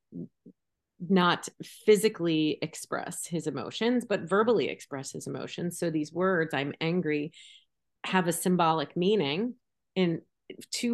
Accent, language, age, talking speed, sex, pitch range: American, English, 30-49, 115 wpm, female, 155-180 Hz